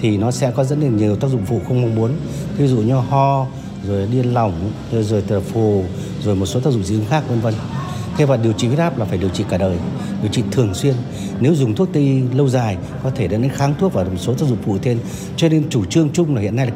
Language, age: Vietnamese, 60-79